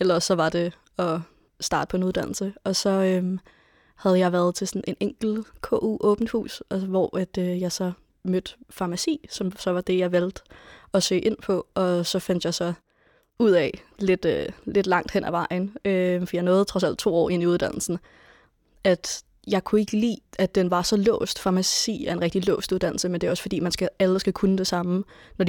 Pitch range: 180-200 Hz